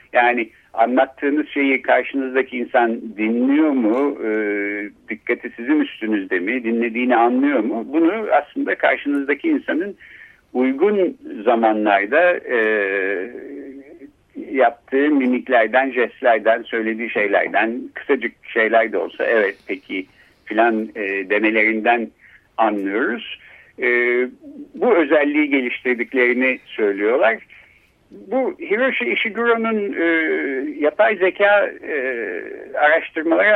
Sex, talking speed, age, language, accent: male, 90 wpm, 60-79, Turkish, native